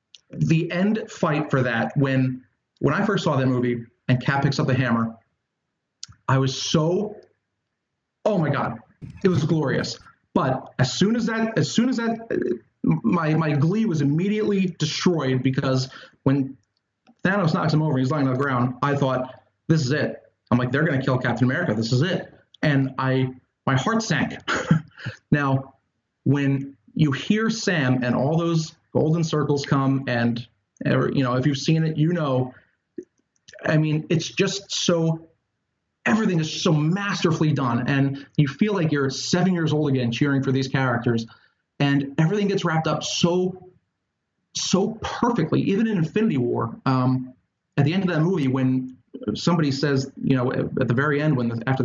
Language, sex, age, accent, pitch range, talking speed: English, male, 30-49, American, 130-165 Hz, 170 wpm